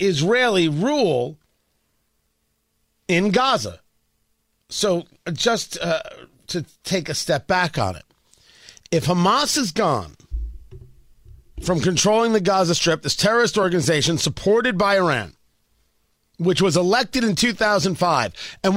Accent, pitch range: American, 135-195 Hz